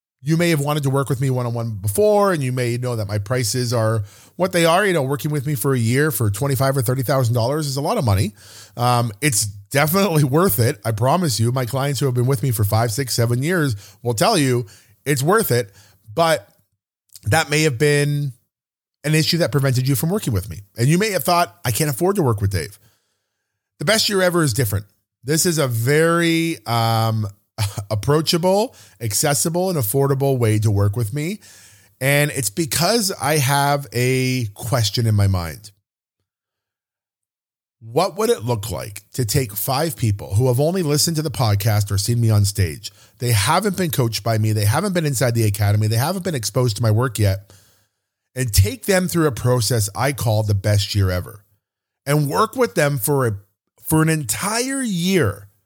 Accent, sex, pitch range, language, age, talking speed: American, male, 105-150 Hz, English, 30-49, 195 wpm